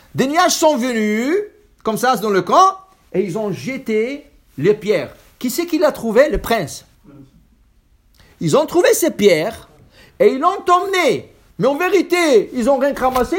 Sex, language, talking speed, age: male, English, 170 wpm, 60-79